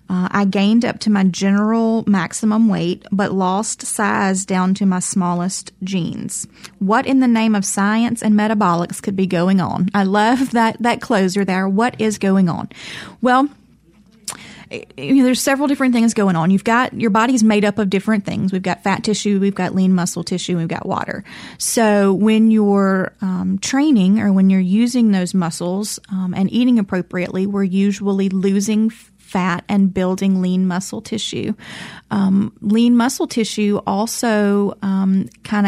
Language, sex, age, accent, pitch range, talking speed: English, female, 30-49, American, 190-220 Hz, 165 wpm